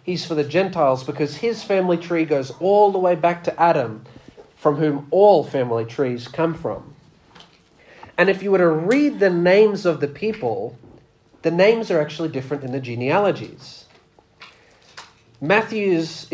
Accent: Australian